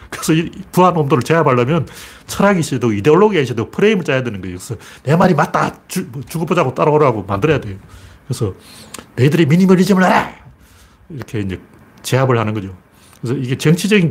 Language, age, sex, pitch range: Korean, 40-59, male, 100-140 Hz